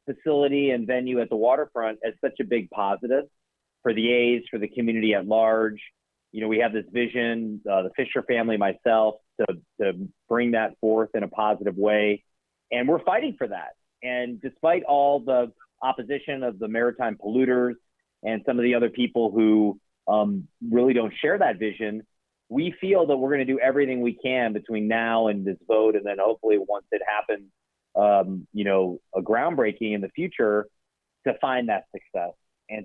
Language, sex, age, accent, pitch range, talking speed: English, male, 30-49, American, 105-130 Hz, 185 wpm